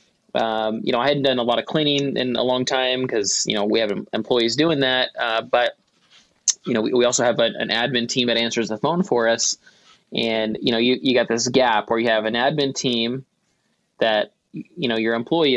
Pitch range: 115-130 Hz